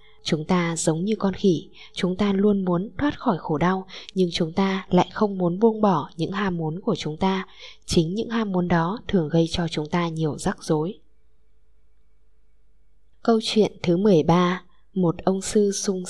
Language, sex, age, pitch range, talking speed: Vietnamese, female, 10-29, 155-200 Hz, 185 wpm